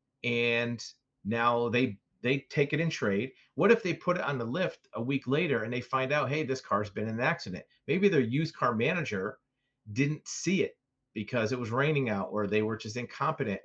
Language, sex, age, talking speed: English, male, 40-59, 210 wpm